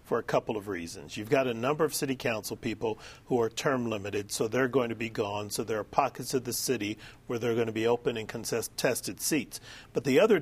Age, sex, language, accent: 40-59, male, English, American